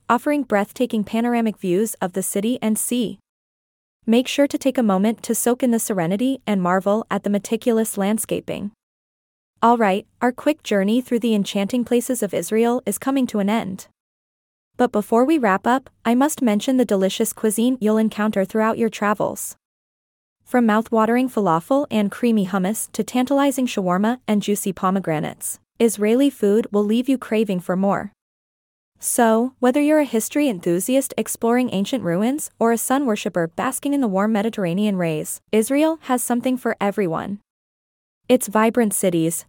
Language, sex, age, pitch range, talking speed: English, female, 20-39, 200-245 Hz, 160 wpm